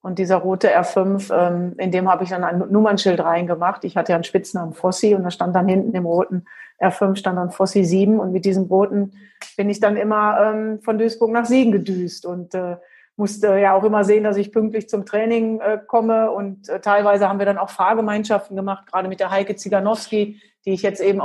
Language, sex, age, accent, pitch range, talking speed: German, female, 40-59, German, 185-210 Hz, 205 wpm